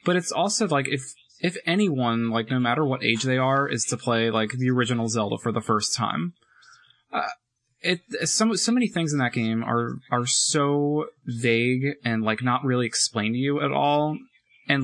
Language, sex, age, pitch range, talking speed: English, male, 20-39, 115-135 Hz, 195 wpm